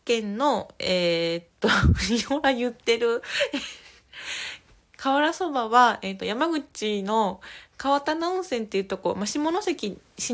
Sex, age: female, 20-39